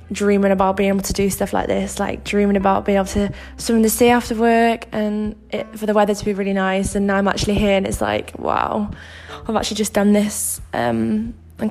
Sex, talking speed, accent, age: female, 230 wpm, British, 10-29